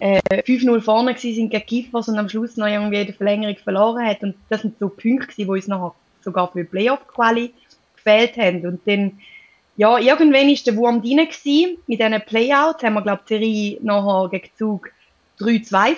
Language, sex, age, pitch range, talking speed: German, female, 20-39, 200-240 Hz, 185 wpm